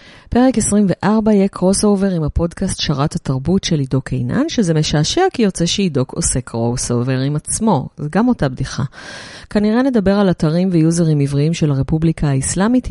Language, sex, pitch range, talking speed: Hebrew, female, 135-180 Hz, 155 wpm